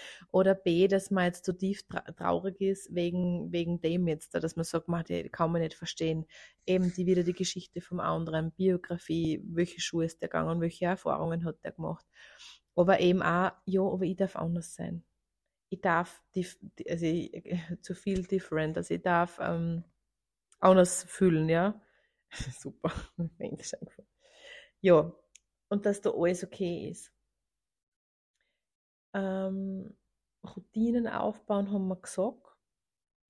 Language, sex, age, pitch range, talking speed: German, female, 30-49, 170-195 Hz, 140 wpm